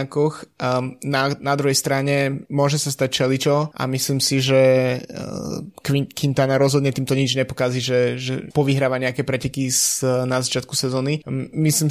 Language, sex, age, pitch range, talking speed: Slovak, male, 20-39, 130-140 Hz, 130 wpm